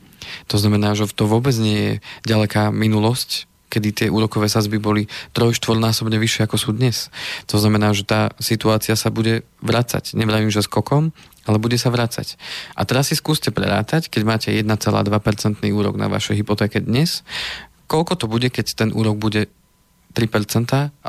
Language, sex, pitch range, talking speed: Slovak, male, 105-120 Hz, 160 wpm